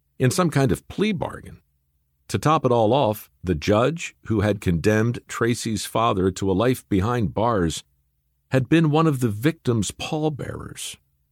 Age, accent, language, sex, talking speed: 50-69, American, English, male, 160 wpm